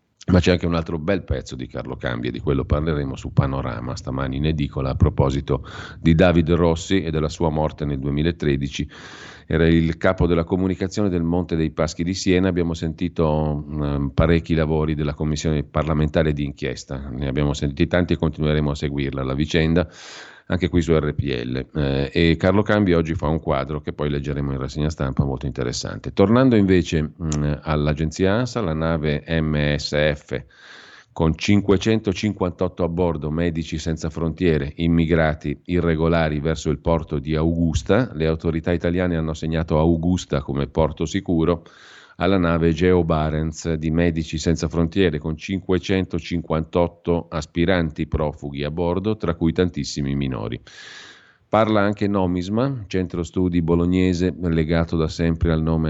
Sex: male